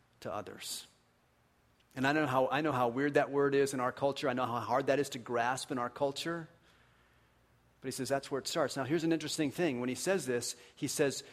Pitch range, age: 130-210 Hz, 40-59